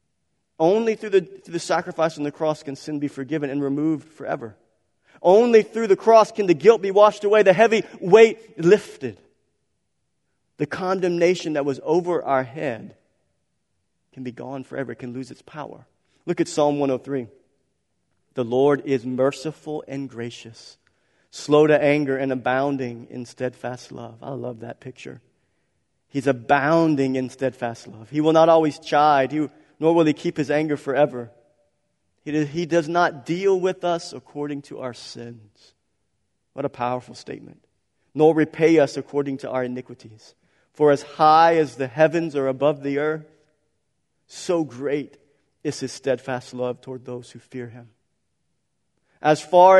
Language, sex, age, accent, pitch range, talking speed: English, male, 40-59, American, 125-160 Hz, 155 wpm